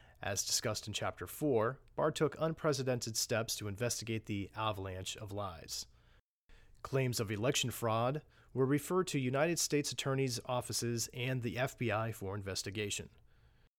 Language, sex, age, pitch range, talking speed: English, male, 40-59, 105-135 Hz, 135 wpm